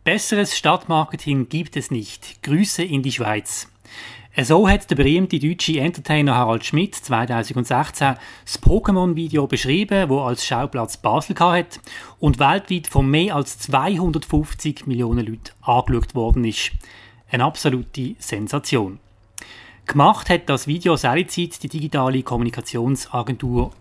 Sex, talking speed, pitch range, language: male, 120 wpm, 120-165 Hz, German